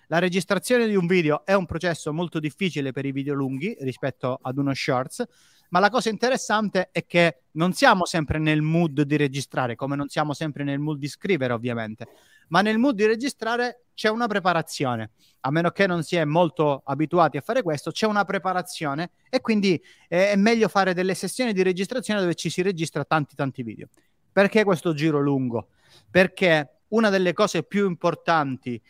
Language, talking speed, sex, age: Italian, 185 wpm, male, 30-49